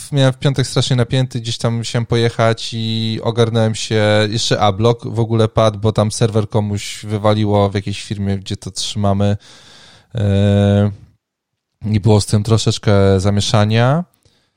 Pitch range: 100-120 Hz